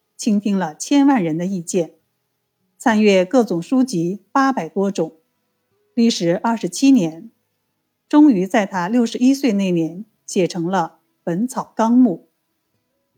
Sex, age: female, 50-69